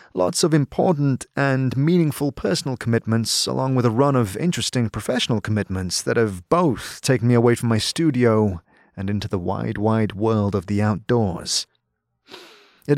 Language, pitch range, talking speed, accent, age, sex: English, 105-135 Hz, 155 wpm, British, 30-49, male